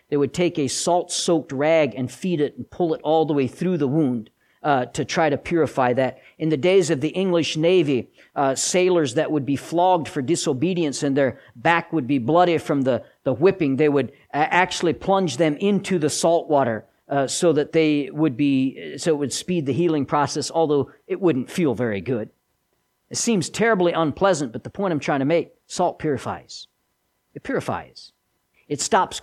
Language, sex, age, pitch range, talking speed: English, male, 50-69, 135-190 Hz, 195 wpm